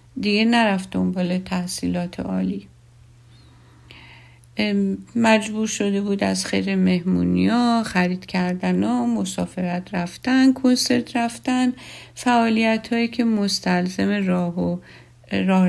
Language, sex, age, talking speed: Persian, female, 50-69, 95 wpm